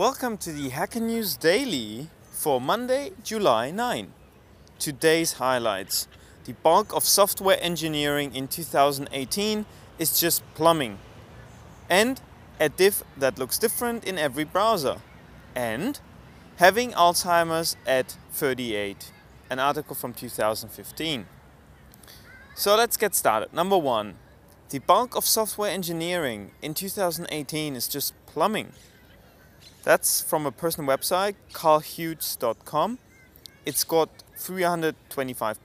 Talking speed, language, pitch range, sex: 110 wpm, English, 125-180 Hz, male